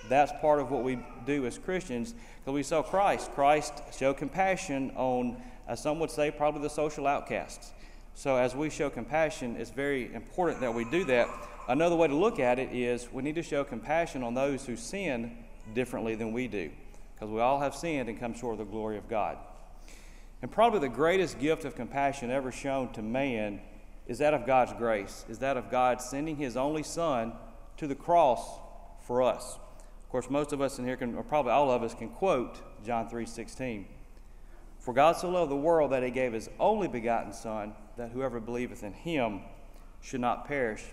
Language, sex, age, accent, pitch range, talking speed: English, male, 40-59, American, 115-145 Hz, 200 wpm